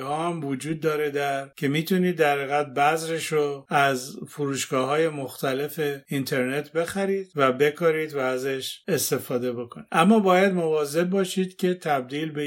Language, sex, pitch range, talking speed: Persian, male, 135-160 Hz, 135 wpm